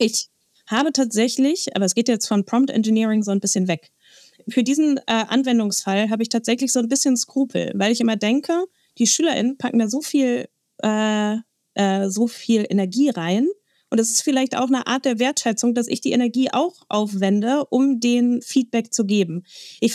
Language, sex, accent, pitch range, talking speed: German, female, German, 195-260 Hz, 175 wpm